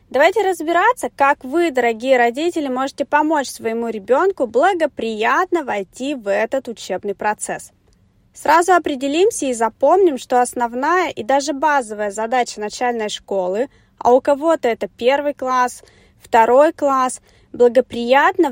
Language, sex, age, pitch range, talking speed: Russian, female, 20-39, 230-305 Hz, 120 wpm